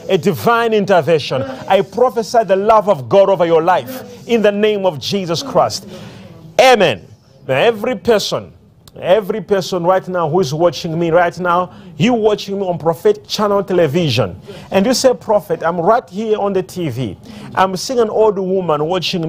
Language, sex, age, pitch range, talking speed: English, male, 40-59, 160-205 Hz, 170 wpm